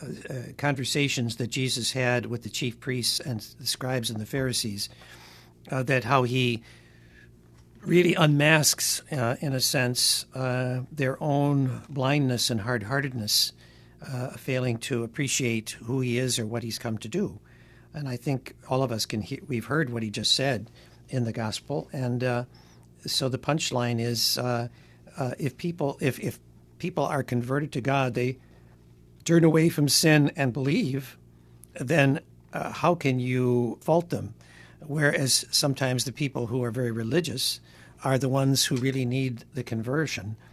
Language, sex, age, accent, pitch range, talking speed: English, male, 60-79, American, 115-140 Hz, 160 wpm